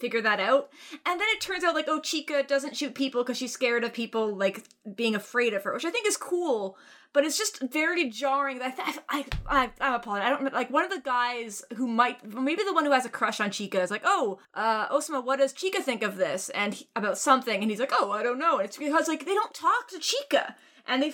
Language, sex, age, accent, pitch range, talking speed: English, female, 20-39, American, 210-285 Hz, 260 wpm